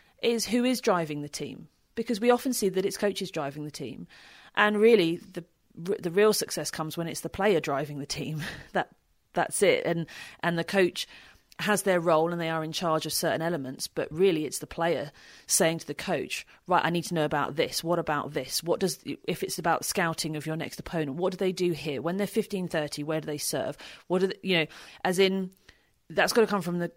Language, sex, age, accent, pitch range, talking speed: English, female, 30-49, British, 160-205 Hz, 230 wpm